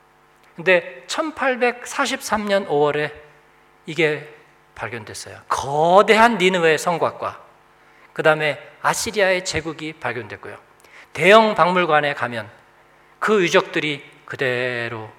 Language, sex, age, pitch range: Korean, male, 40-59, 155-245 Hz